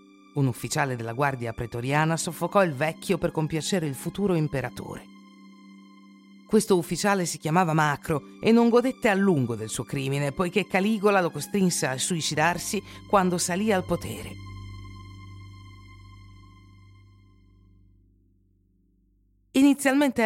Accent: native